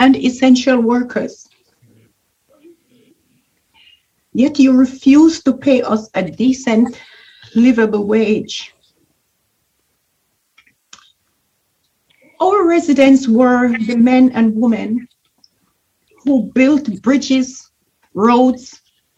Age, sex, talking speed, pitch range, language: 50-69, female, 75 wpm, 240-300 Hz, English